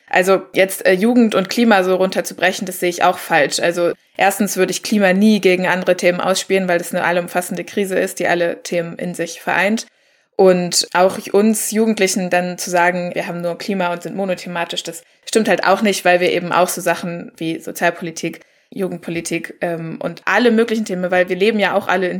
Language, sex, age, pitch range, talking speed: German, female, 20-39, 180-215 Hz, 205 wpm